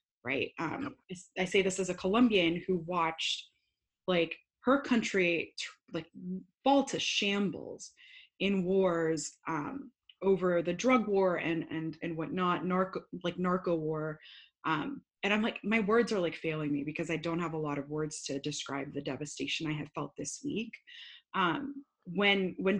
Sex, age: female, 20-39